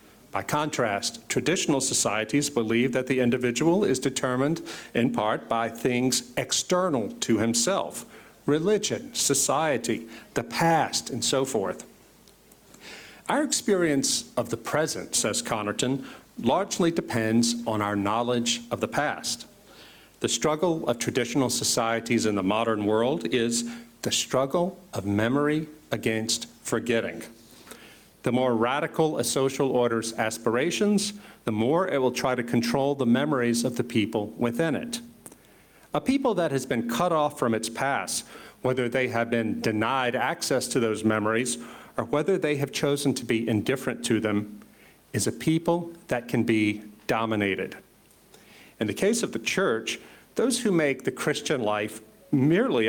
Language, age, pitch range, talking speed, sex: Slovak, 50-69, 115-145 Hz, 140 wpm, male